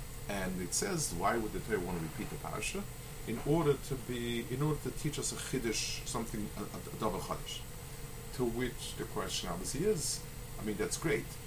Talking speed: 200 wpm